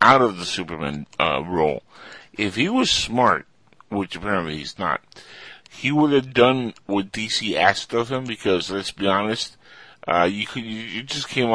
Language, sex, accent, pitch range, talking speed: English, male, American, 95-110 Hz, 170 wpm